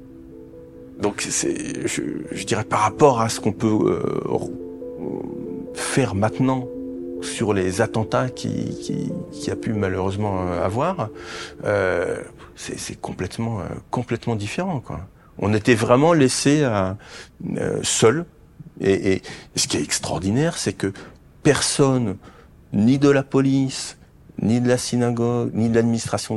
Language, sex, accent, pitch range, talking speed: French, male, French, 100-135 Hz, 130 wpm